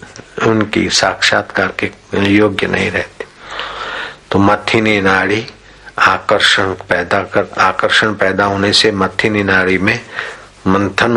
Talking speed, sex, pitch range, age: 105 wpm, male, 95-110 Hz, 60-79